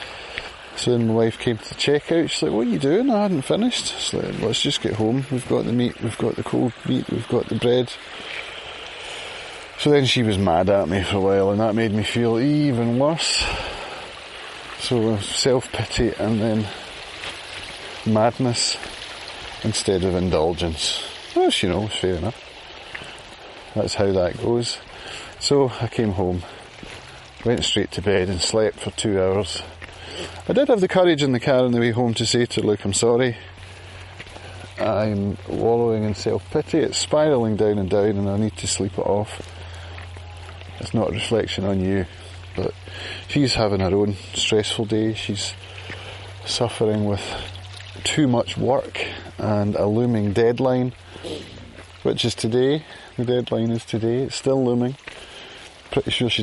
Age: 30-49